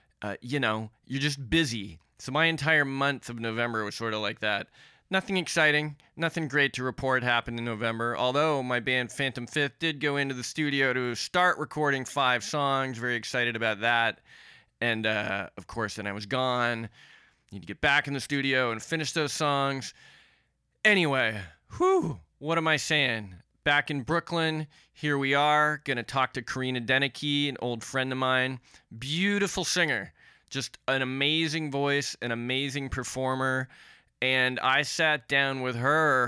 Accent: American